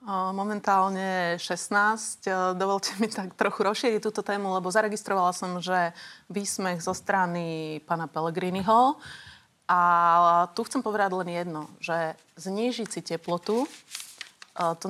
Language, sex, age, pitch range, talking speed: Slovak, female, 30-49, 175-205 Hz, 115 wpm